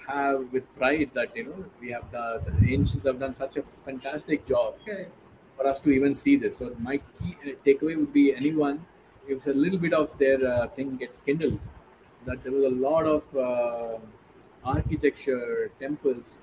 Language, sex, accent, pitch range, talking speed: Hindi, male, native, 130-150 Hz, 190 wpm